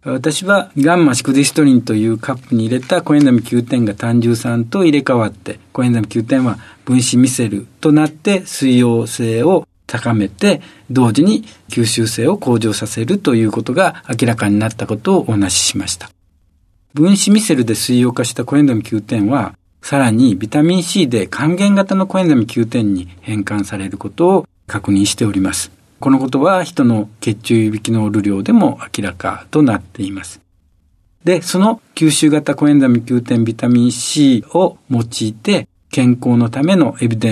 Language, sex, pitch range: Japanese, male, 105-140 Hz